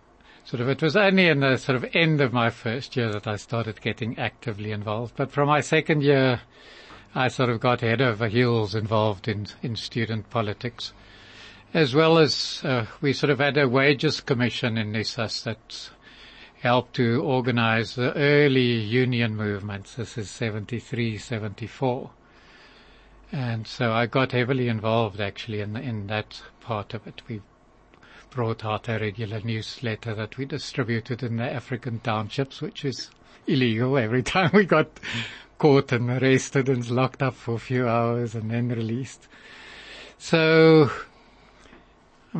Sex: male